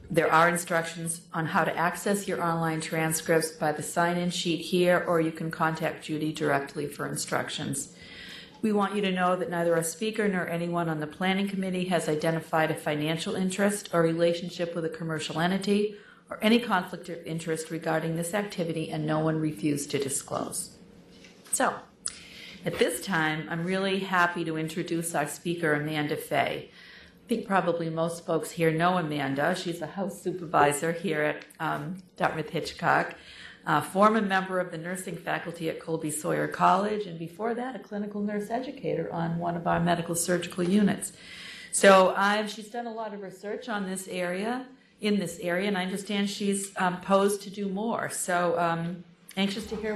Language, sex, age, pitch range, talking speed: English, female, 40-59, 165-200 Hz, 175 wpm